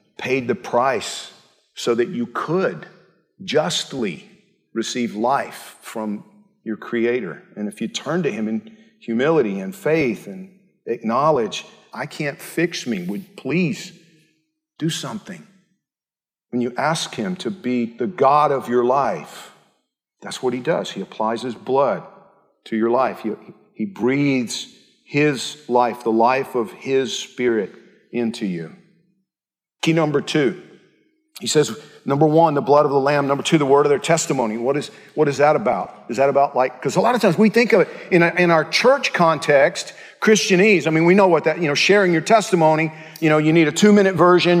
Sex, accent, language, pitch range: male, American, English, 140-190 Hz